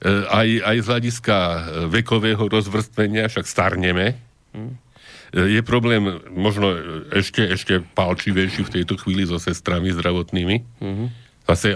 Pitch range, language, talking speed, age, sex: 90-110 Hz, Slovak, 105 wpm, 50-69, male